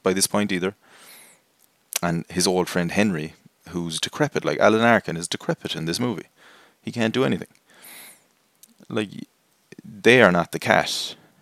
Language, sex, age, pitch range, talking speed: English, male, 30-49, 85-105 Hz, 150 wpm